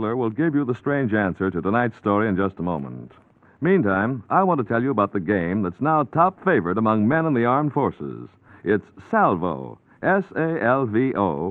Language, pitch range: English, 100-150 Hz